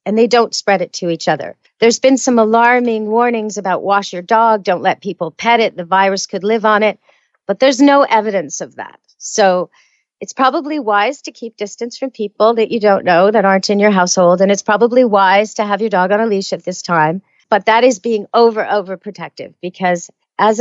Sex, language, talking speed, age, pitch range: female, English, 220 wpm, 50-69, 185-230 Hz